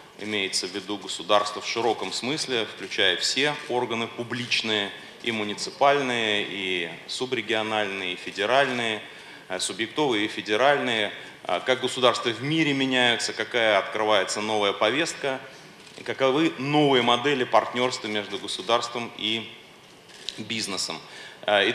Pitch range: 105-130 Hz